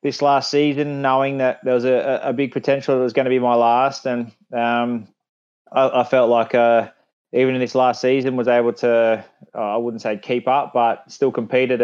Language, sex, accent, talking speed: English, male, Australian, 215 wpm